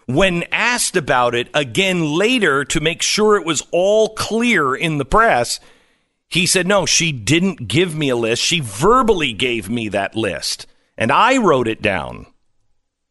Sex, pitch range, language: male, 125-190 Hz, English